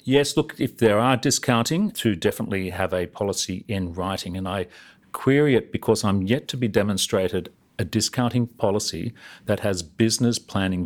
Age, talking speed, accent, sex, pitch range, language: 40-59, 165 wpm, Australian, male, 95-115 Hz, English